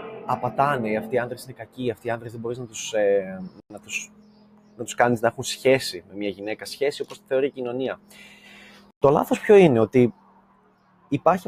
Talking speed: 195 wpm